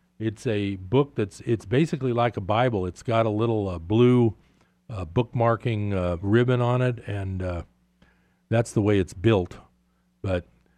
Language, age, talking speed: English, 50-69, 160 wpm